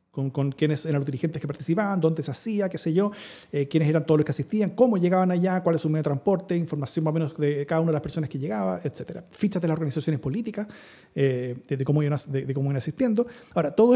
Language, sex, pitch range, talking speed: Spanish, male, 145-180 Hz, 255 wpm